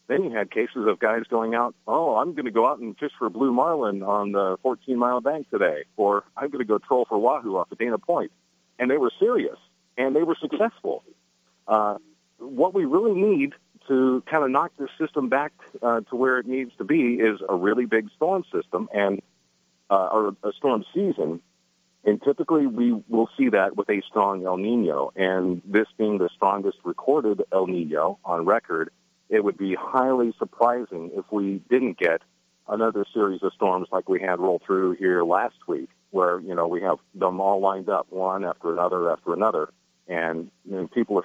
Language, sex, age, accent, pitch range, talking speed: English, male, 40-59, American, 95-145 Hz, 195 wpm